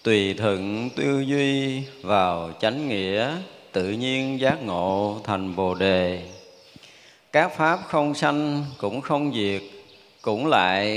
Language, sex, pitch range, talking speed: Vietnamese, male, 105-160 Hz, 125 wpm